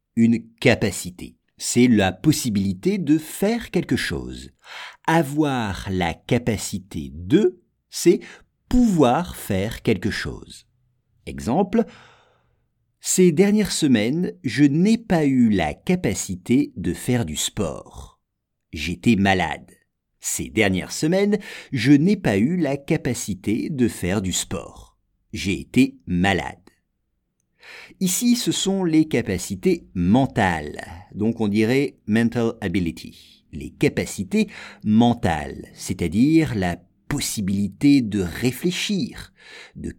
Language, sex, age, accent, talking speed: English, male, 50-69, French, 105 wpm